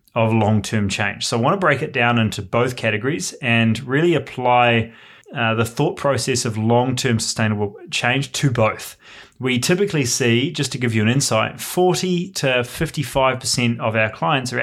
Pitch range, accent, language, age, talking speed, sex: 110-135 Hz, Australian, English, 20-39, 175 wpm, male